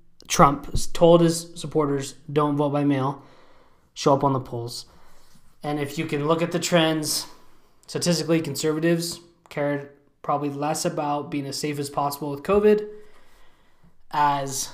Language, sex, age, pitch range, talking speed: English, male, 20-39, 140-165 Hz, 145 wpm